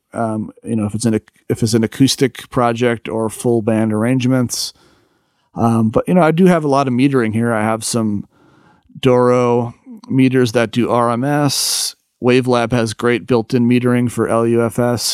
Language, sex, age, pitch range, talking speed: English, male, 40-59, 110-130 Hz, 170 wpm